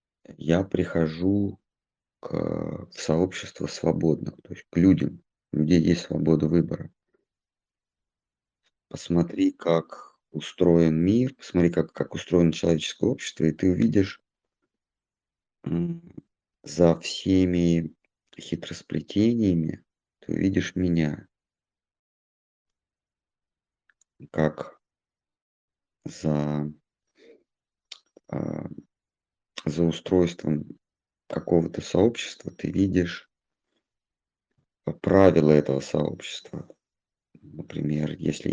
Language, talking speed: Russian, 70 wpm